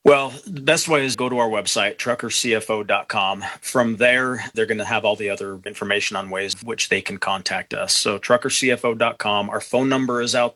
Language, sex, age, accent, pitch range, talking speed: English, male, 30-49, American, 105-120 Hz, 195 wpm